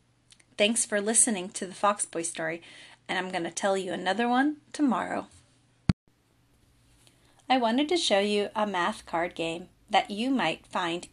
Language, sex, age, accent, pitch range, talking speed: English, female, 30-49, American, 175-240 Hz, 150 wpm